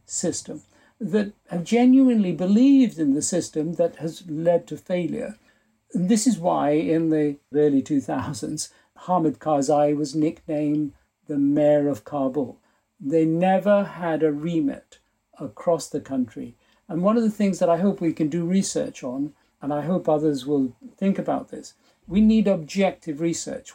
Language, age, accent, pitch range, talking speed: English, 60-79, British, 155-210 Hz, 155 wpm